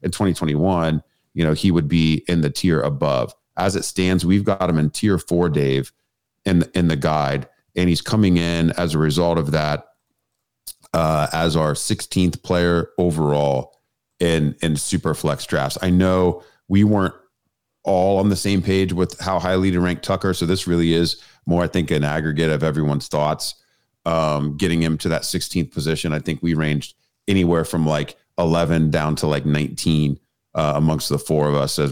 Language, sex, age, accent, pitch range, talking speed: English, male, 30-49, American, 75-90 Hz, 185 wpm